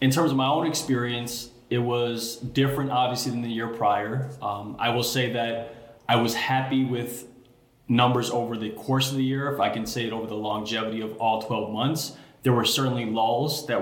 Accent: American